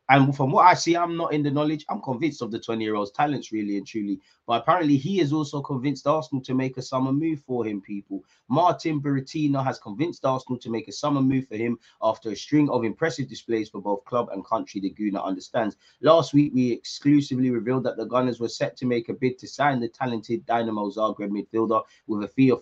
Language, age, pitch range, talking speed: English, 20-39, 100-130 Hz, 225 wpm